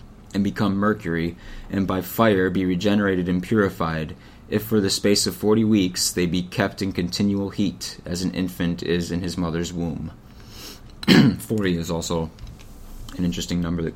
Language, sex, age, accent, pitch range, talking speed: English, male, 20-39, American, 90-110 Hz, 165 wpm